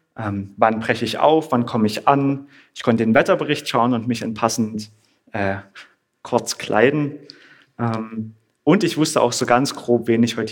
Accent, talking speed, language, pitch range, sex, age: German, 185 wpm, German, 110-145 Hz, male, 30-49